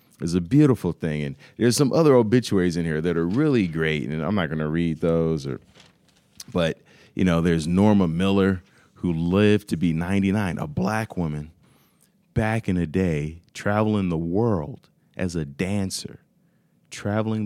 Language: English